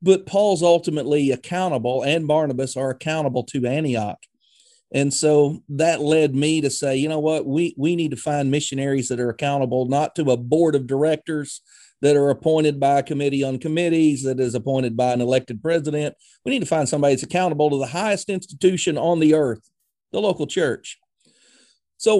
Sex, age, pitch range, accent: male, 40-59, 135-170 Hz, American